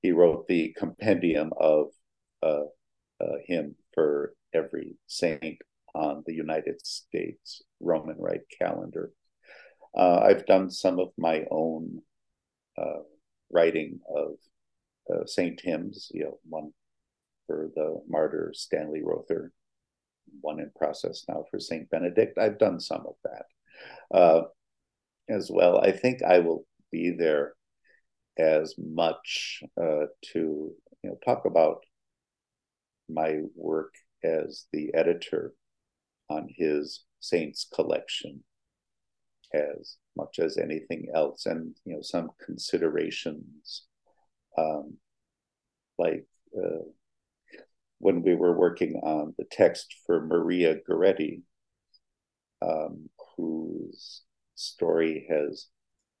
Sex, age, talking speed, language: male, 50-69, 110 wpm, English